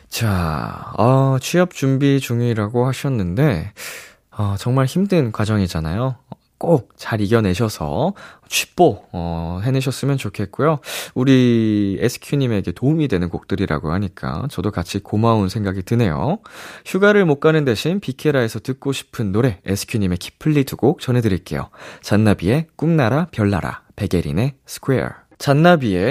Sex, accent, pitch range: male, native, 100-150 Hz